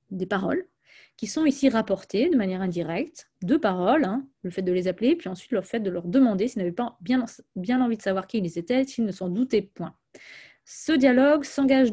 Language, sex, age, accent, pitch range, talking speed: French, female, 20-39, French, 185-270 Hz, 215 wpm